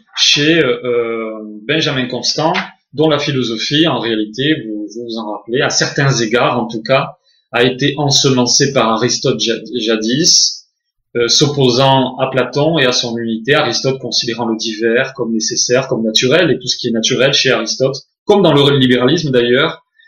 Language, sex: French, male